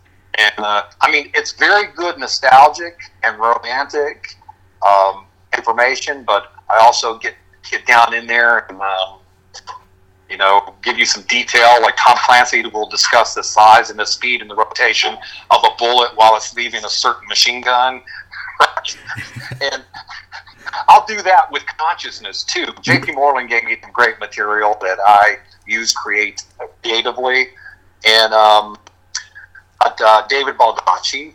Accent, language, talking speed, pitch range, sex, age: American, English, 145 wpm, 100-130 Hz, male, 40-59